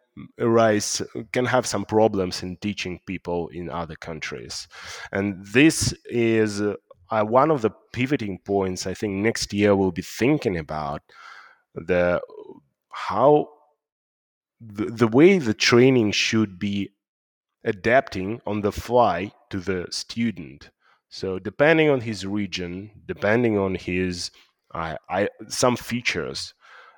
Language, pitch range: English, 95-115 Hz